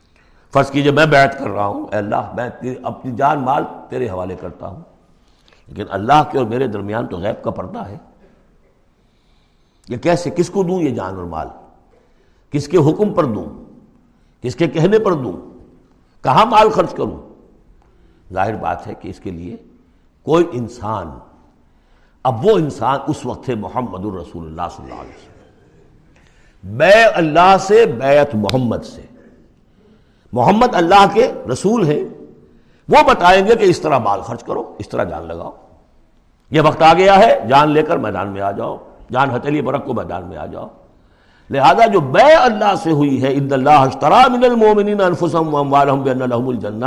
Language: Urdu